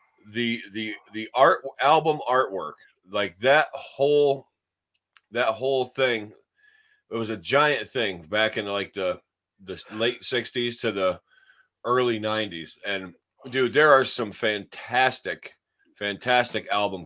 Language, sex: English, male